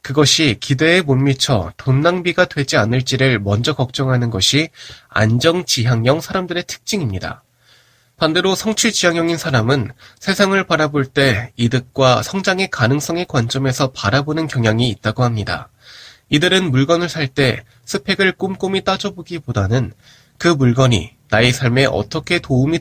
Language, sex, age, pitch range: Korean, male, 20-39, 120-170 Hz